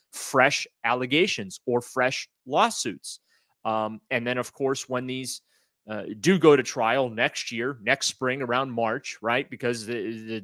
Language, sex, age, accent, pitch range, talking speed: English, male, 30-49, American, 115-140 Hz, 150 wpm